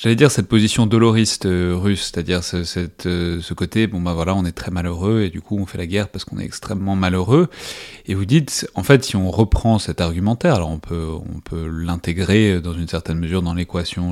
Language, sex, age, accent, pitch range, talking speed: French, male, 30-49, French, 85-105 Hz, 235 wpm